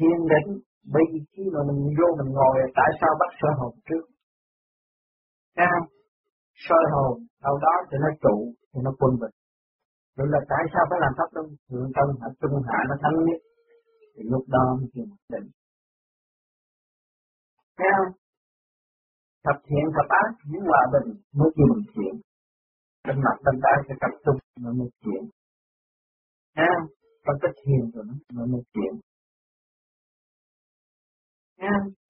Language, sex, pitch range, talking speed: Vietnamese, male, 135-185 Hz, 140 wpm